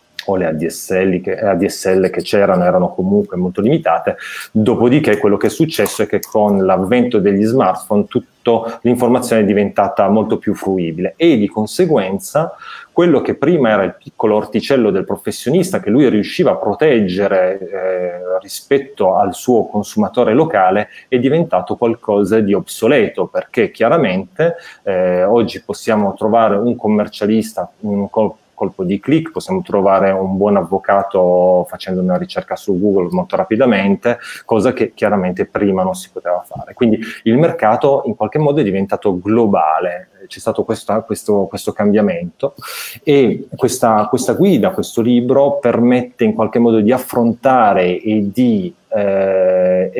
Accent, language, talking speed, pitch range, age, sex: native, Italian, 145 wpm, 95-125 Hz, 30-49, male